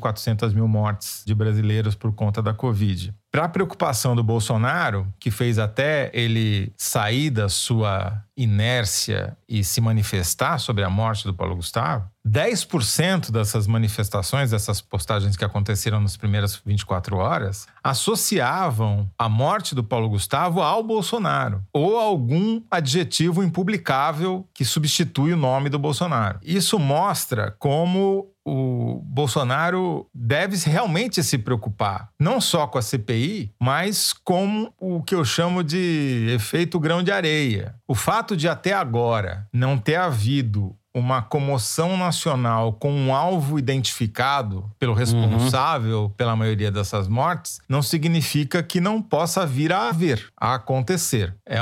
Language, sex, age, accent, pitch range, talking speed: Portuguese, male, 40-59, Brazilian, 110-165 Hz, 135 wpm